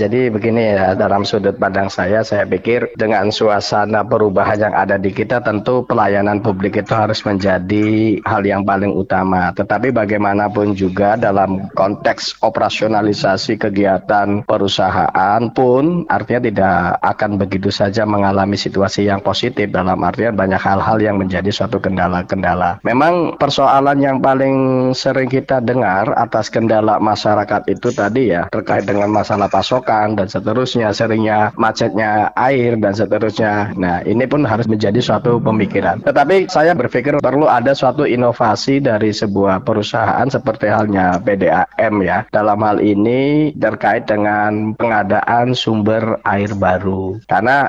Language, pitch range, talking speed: Indonesian, 100-115 Hz, 135 wpm